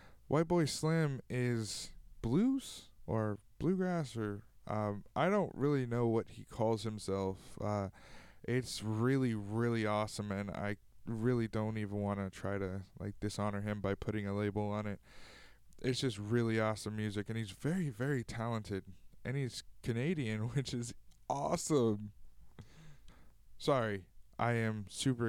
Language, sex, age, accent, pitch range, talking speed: English, male, 20-39, American, 100-120 Hz, 140 wpm